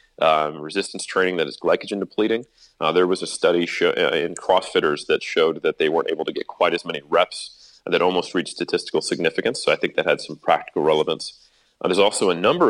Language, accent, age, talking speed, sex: English, American, 30-49, 215 wpm, male